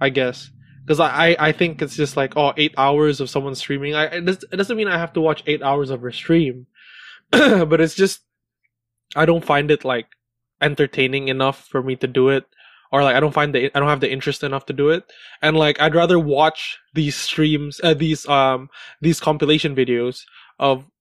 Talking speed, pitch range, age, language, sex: 205 wpm, 135-155 Hz, 20-39, English, male